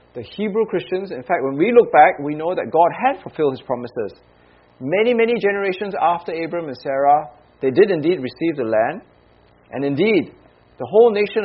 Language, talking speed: English, 185 wpm